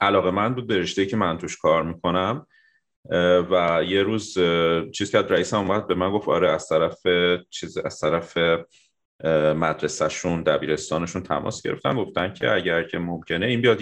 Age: 30-49